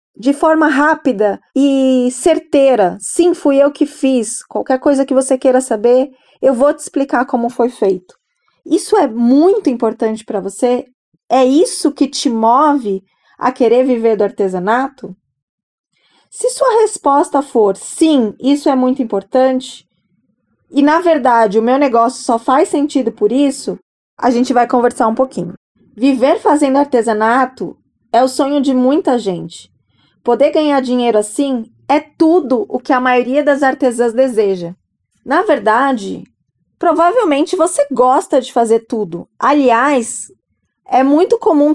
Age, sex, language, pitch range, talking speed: 20-39, female, Portuguese, 230-290 Hz, 140 wpm